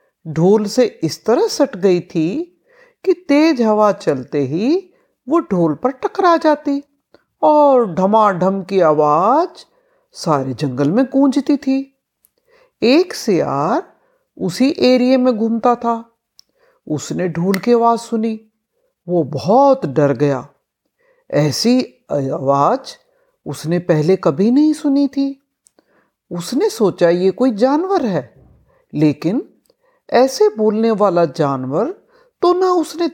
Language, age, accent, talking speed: Hindi, 60-79, native, 120 wpm